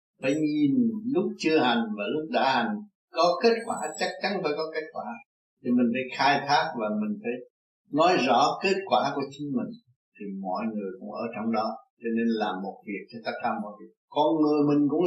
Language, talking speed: Vietnamese, 215 wpm